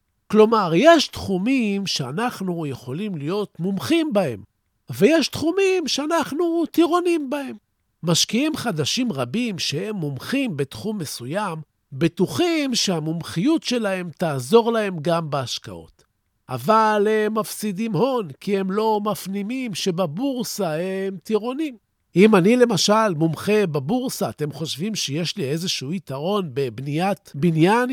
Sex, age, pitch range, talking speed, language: male, 50-69, 155-235 Hz, 110 wpm, Hebrew